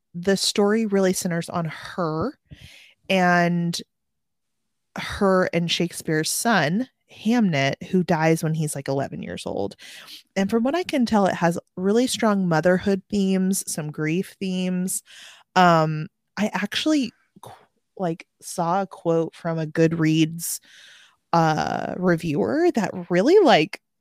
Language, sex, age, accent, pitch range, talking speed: English, female, 20-39, American, 170-215 Hz, 125 wpm